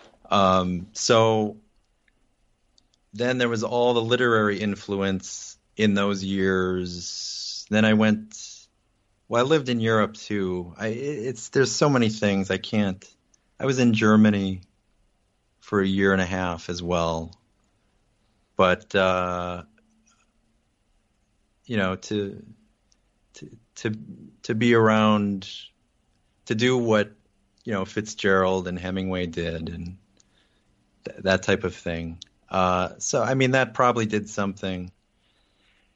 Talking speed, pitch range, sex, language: 120 wpm, 95-115 Hz, male, English